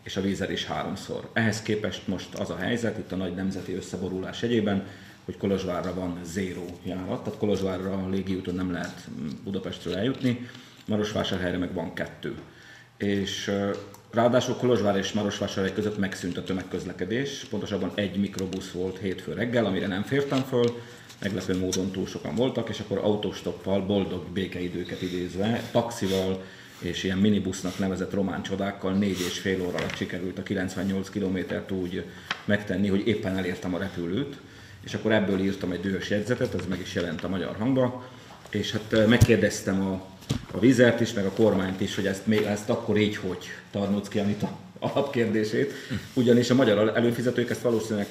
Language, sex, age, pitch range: Hungarian, male, 30-49, 95-110 Hz